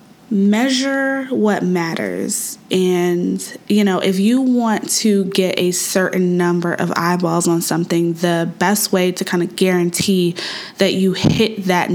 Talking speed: 145 wpm